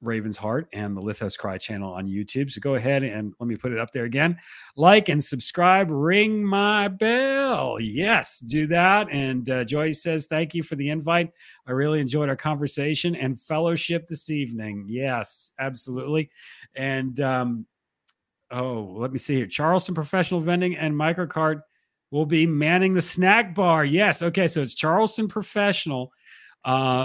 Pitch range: 125-170 Hz